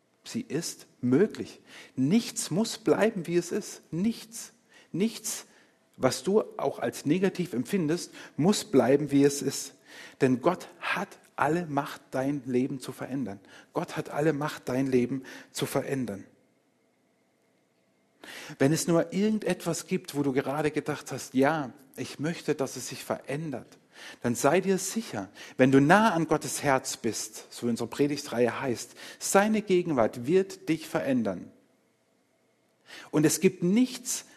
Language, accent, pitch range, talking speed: German, German, 135-190 Hz, 140 wpm